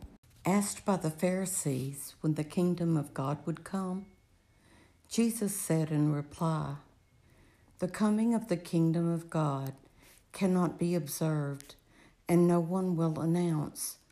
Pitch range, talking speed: 145-175 Hz, 125 wpm